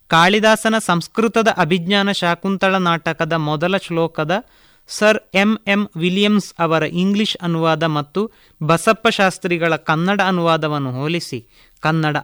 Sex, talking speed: male, 105 wpm